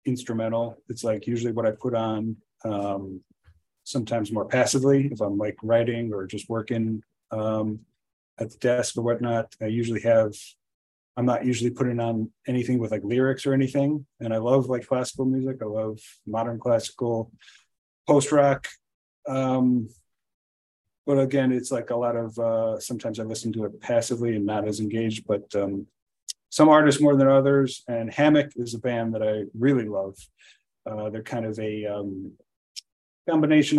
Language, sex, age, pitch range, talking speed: English, male, 30-49, 110-130 Hz, 165 wpm